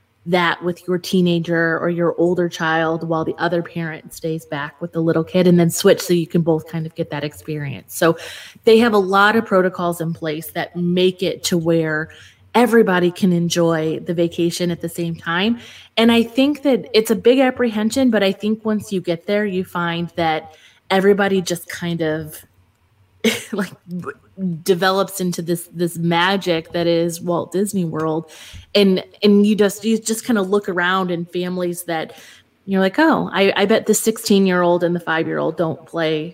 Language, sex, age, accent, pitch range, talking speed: English, female, 20-39, American, 165-195 Hz, 190 wpm